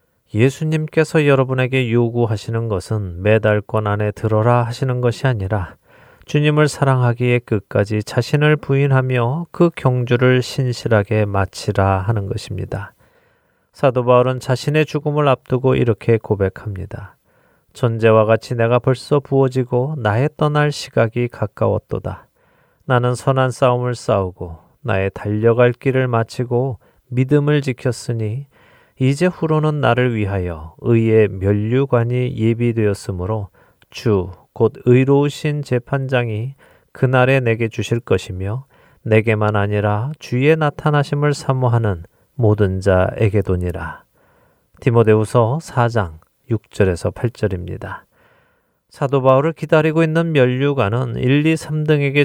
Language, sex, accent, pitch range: Korean, male, native, 105-135 Hz